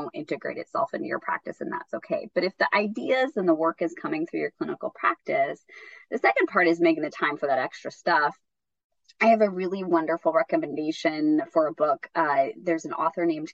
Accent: American